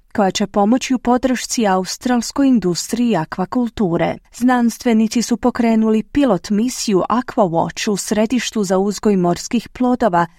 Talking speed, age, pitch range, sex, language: 115 wpm, 30-49, 185-245 Hz, female, Croatian